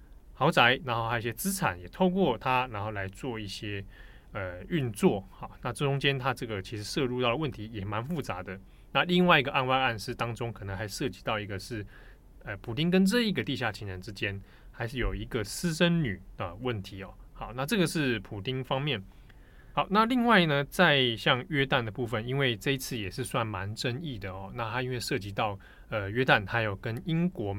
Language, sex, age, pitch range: Chinese, male, 20-39, 105-140 Hz